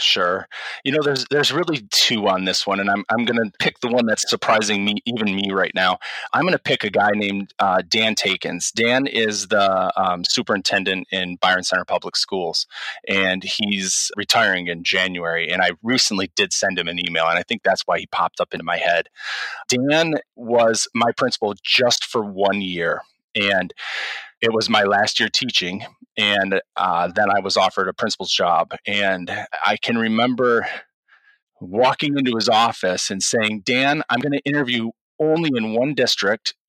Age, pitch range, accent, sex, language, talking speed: 20-39, 95-120 Hz, American, male, English, 180 wpm